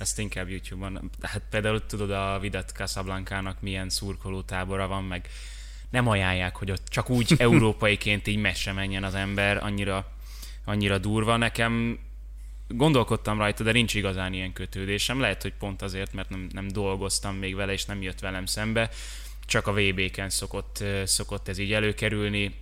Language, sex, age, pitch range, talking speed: Hungarian, male, 10-29, 95-110 Hz, 160 wpm